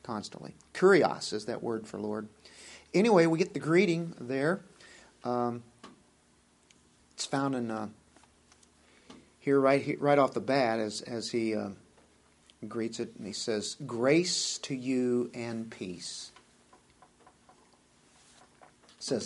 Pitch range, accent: 115-150 Hz, American